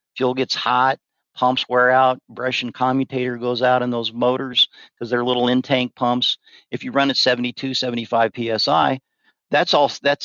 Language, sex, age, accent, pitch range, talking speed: English, male, 50-69, American, 115-130 Hz, 170 wpm